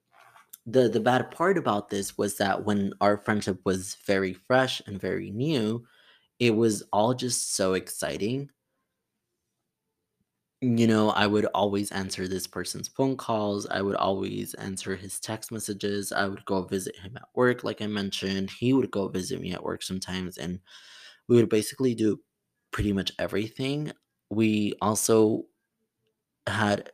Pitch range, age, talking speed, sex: 95-120 Hz, 20-39, 155 wpm, male